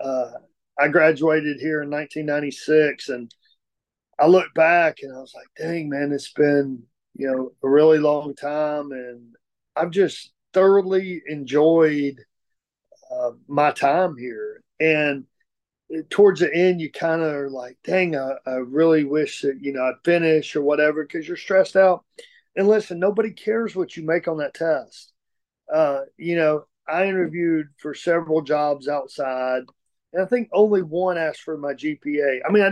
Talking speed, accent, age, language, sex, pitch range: 165 wpm, American, 40-59, English, male, 140-175 Hz